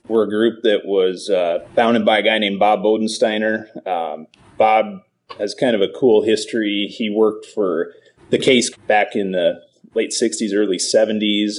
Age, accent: 30-49, American